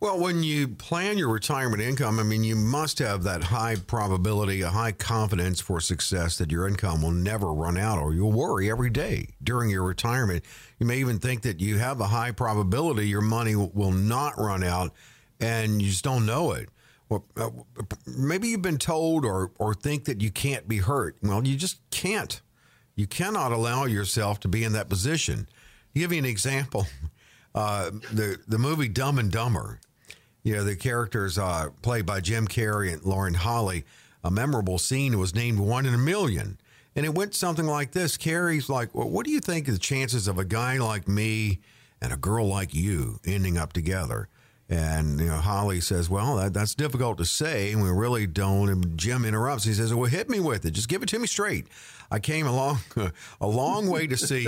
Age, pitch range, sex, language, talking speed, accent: 50-69, 100-145 Hz, male, English, 200 wpm, American